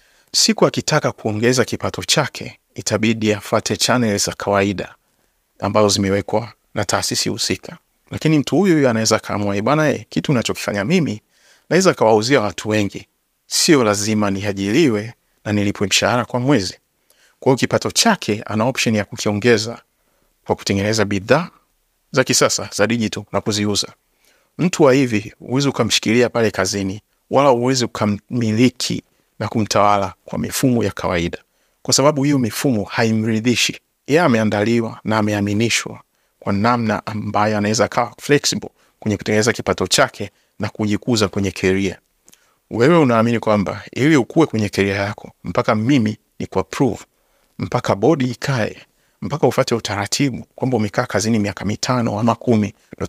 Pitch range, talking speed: 100-120 Hz, 130 wpm